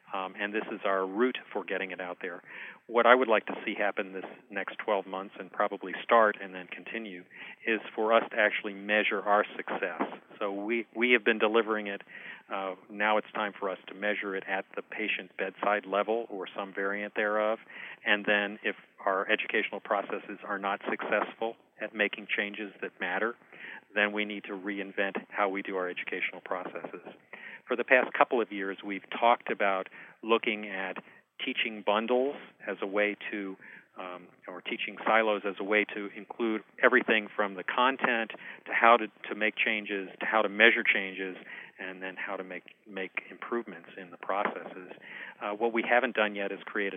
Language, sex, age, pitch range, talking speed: English, male, 40-59, 100-110 Hz, 185 wpm